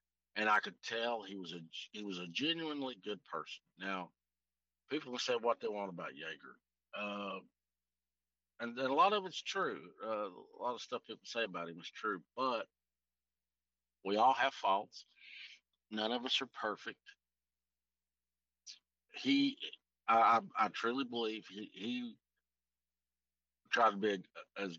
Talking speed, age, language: 150 wpm, 50-69, English